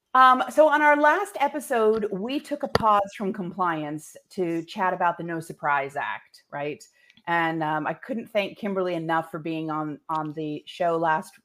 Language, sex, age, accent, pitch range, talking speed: English, female, 30-49, American, 160-205 Hz, 180 wpm